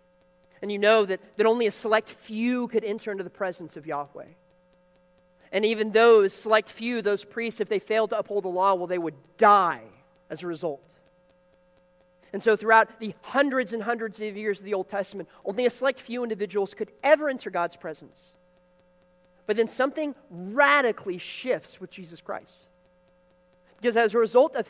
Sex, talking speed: male, 175 wpm